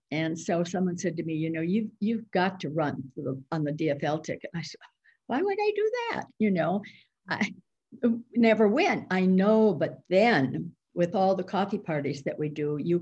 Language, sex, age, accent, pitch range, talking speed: English, female, 60-79, American, 165-220 Hz, 210 wpm